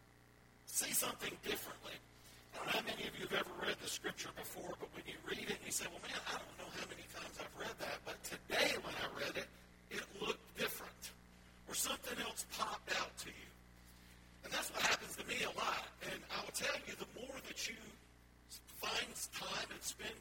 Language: English